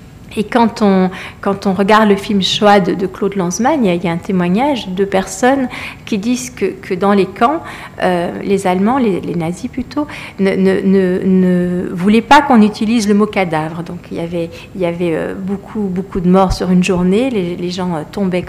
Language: French